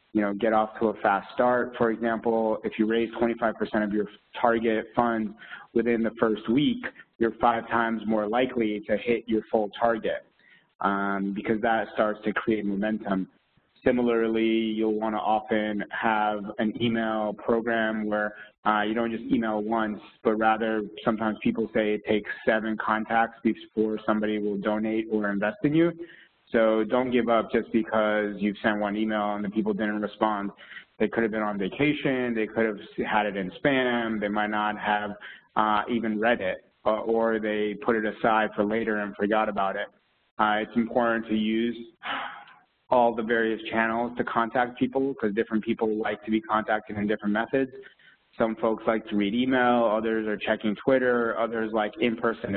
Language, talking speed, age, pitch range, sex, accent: English, 175 wpm, 20-39, 105-115 Hz, male, American